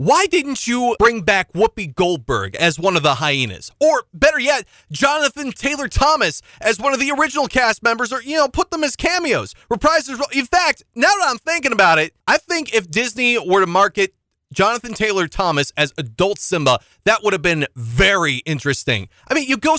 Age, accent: 30-49, American